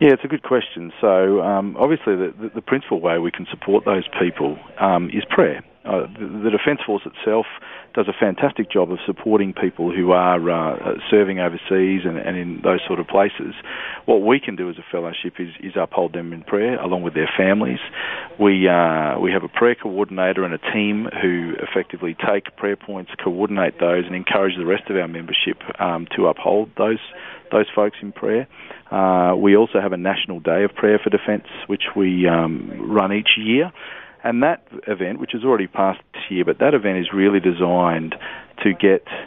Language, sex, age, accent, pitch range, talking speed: English, male, 40-59, Australian, 85-100 Hz, 195 wpm